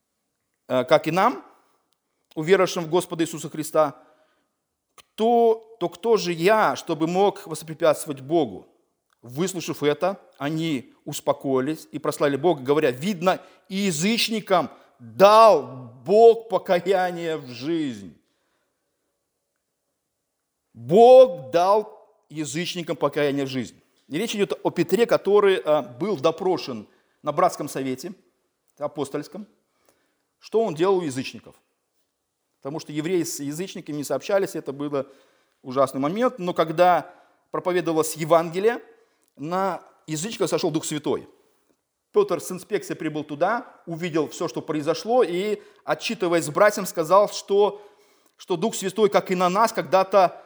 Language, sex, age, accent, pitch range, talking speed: Russian, male, 40-59, native, 155-205 Hz, 115 wpm